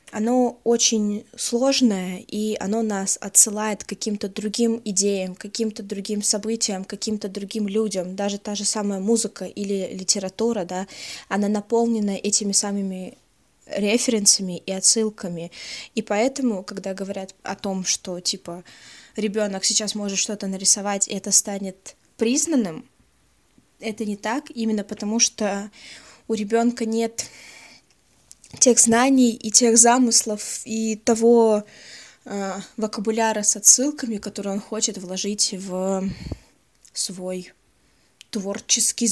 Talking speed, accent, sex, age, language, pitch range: 120 wpm, native, female, 20-39, Russian, 195-230 Hz